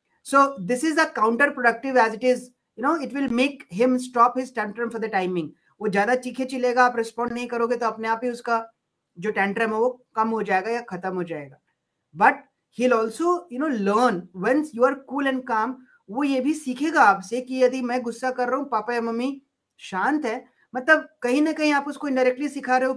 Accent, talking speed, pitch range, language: native, 215 wpm, 210-255 Hz, Hindi